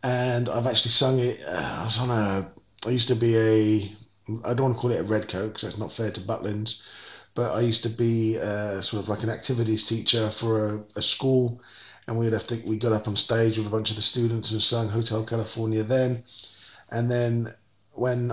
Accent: British